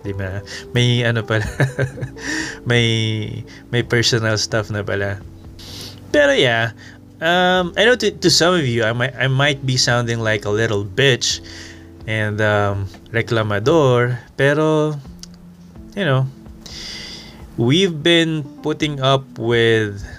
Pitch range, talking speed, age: 100-135 Hz, 120 wpm, 20-39